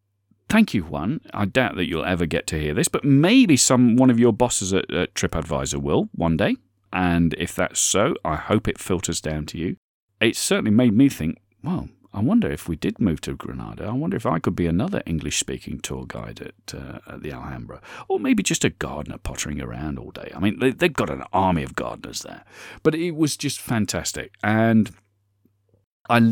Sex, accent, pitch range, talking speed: male, British, 90-125 Hz, 205 wpm